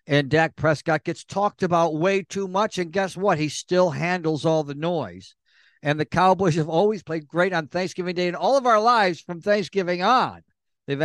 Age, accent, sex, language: 60-79, American, male, English